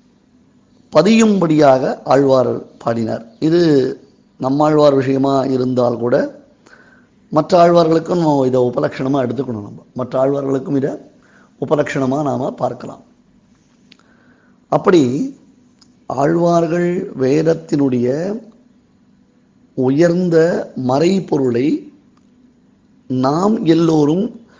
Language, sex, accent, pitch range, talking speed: Tamil, male, native, 130-180 Hz, 65 wpm